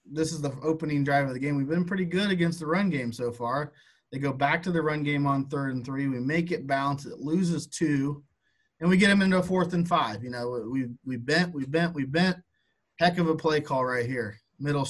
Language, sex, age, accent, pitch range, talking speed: English, male, 30-49, American, 125-160 Hz, 250 wpm